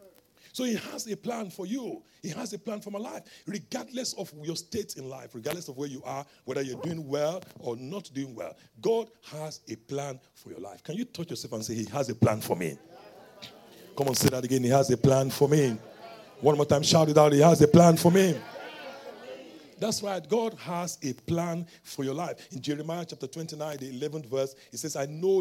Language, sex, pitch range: English, male, 140-190 Hz